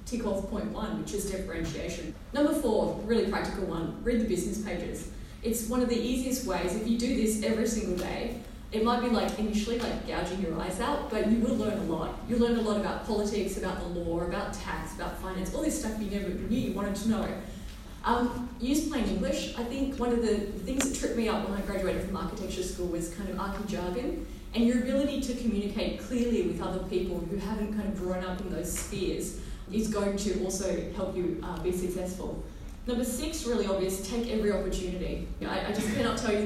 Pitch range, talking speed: 185-230 Hz, 220 wpm